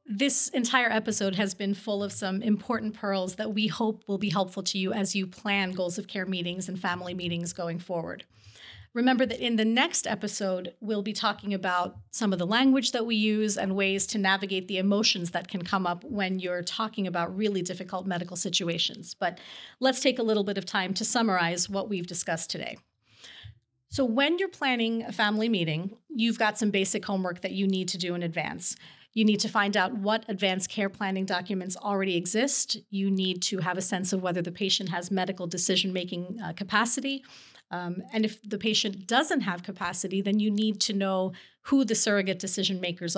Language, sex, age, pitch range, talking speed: English, female, 30-49, 180-215 Hz, 195 wpm